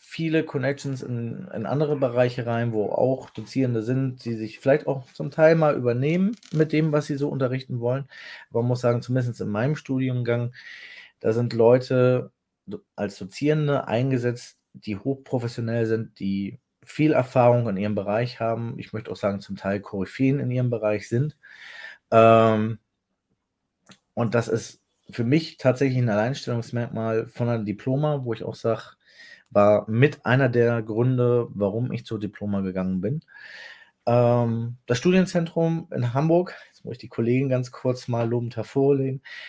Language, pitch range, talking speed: German, 115-135 Hz, 155 wpm